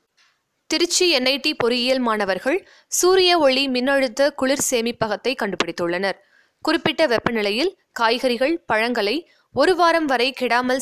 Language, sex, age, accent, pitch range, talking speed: Tamil, female, 20-39, native, 220-280 Hz, 105 wpm